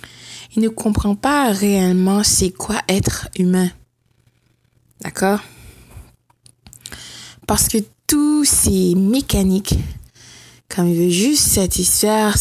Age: 20-39